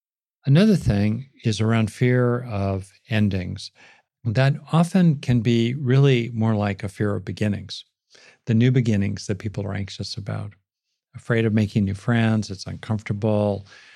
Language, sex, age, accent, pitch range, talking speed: English, male, 50-69, American, 100-125 Hz, 140 wpm